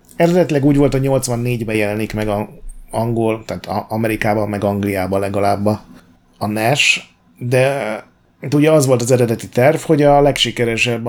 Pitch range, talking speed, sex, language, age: 105-130 Hz, 150 wpm, male, Hungarian, 30-49